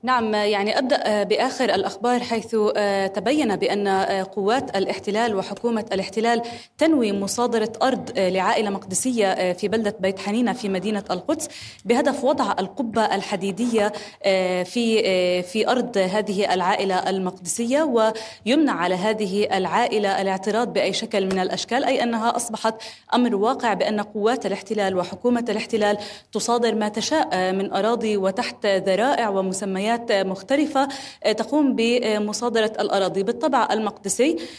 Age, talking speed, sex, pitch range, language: 20-39, 115 wpm, female, 195-235 Hz, Arabic